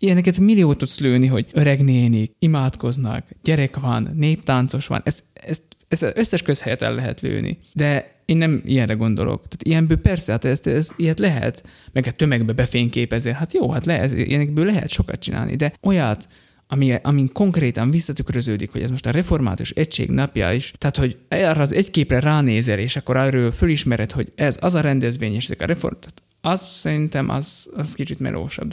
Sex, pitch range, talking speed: male, 120-150 Hz, 175 wpm